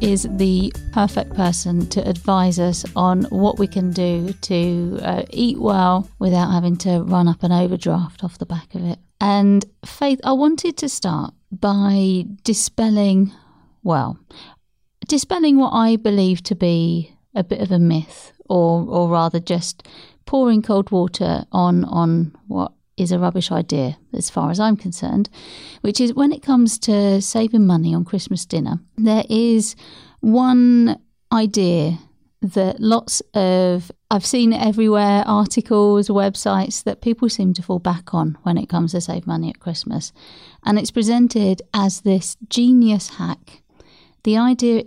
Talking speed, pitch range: 150 wpm, 180-225 Hz